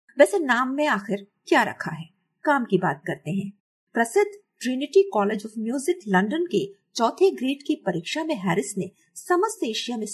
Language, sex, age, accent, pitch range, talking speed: Hindi, female, 50-69, native, 190-310 Hz, 170 wpm